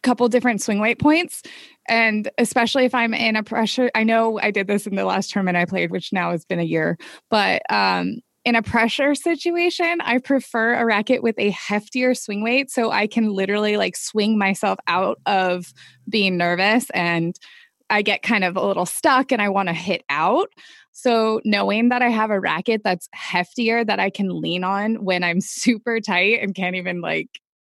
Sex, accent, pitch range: female, American, 185-240 Hz